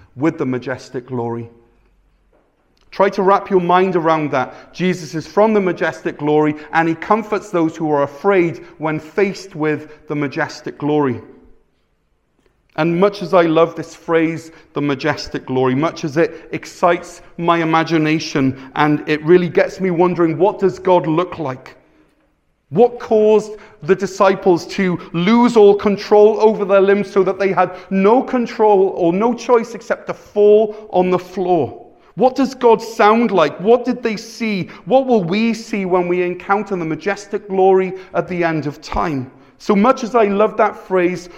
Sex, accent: male, British